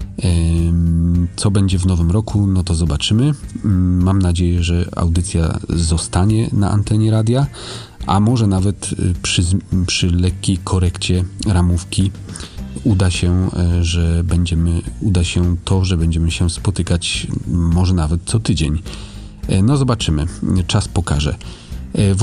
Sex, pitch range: male, 85-100 Hz